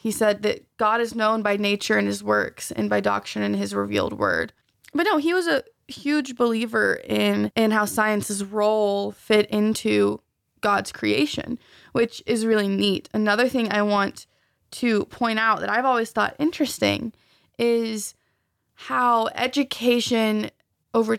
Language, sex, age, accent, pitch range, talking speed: English, female, 20-39, American, 145-235 Hz, 155 wpm